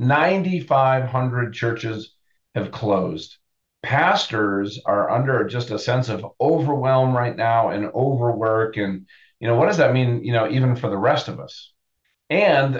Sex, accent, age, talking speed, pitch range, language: male, American, 40-59, 150 wpm, 105-130 Hz, English